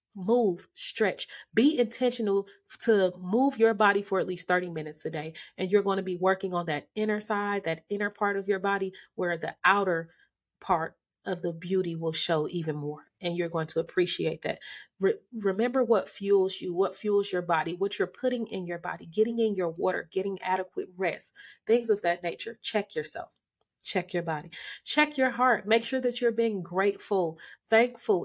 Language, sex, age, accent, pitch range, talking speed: English, female, 30-49, American, 175-230 Hz, 185 wpm